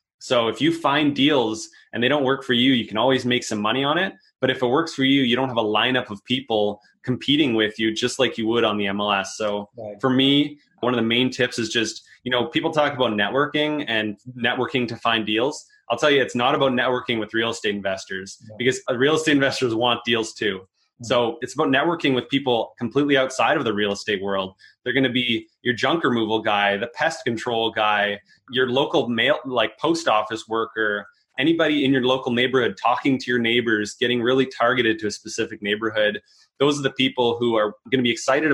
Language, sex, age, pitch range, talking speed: English, male, 20-39, 110-135 Hz, 215 wpm